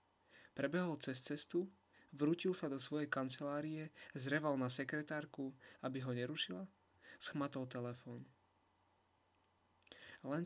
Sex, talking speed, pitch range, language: male, 100 wpm, 120-145 Hz, Slovak